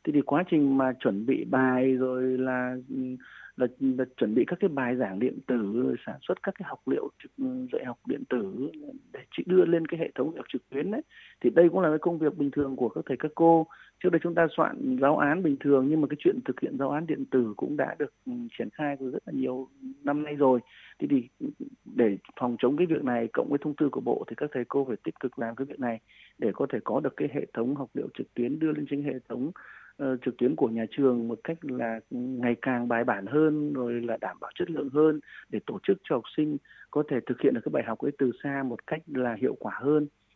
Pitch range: 125-160 Hz